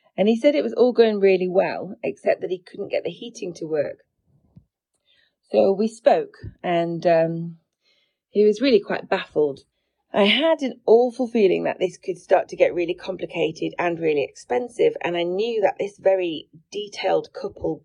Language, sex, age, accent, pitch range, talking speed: English, female, 30-49, British, 165-225 Hz, 175 wpm